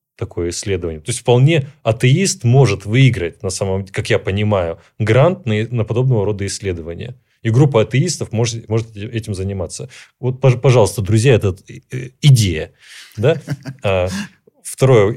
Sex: male